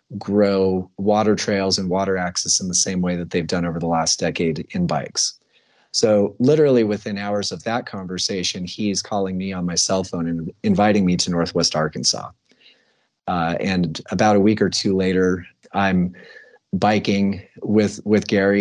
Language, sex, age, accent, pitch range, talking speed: English, male, 30-49, American, 90-100 Hz, 170 wpm